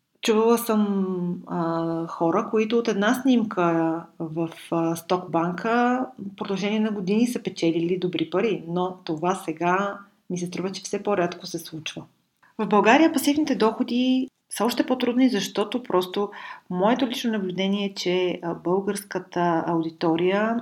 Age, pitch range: 40-59, 170-210 Hz